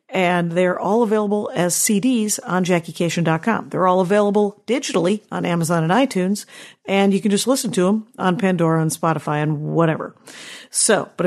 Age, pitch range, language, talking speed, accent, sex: 50-69, 170-215 Hz, English, 165 wpm, American, female